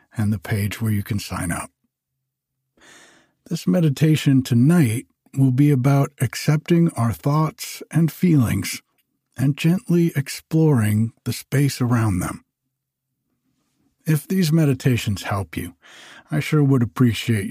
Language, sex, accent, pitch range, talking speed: English, male, American, 115-150 Hz, 120 wpm